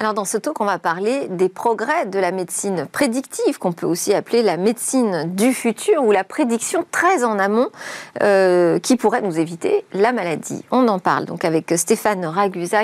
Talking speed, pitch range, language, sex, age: 190 wpm, 195-275 Hz, French, female, 40-59